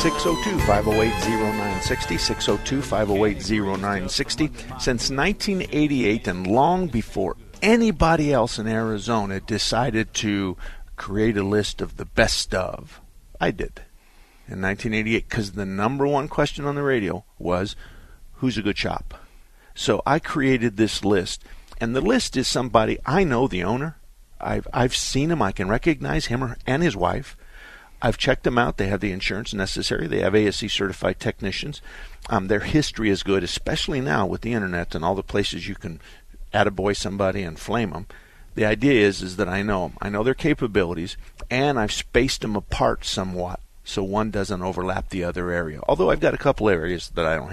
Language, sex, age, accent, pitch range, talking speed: English, male, 50-69, American, 95-125 Hz, 165 wpm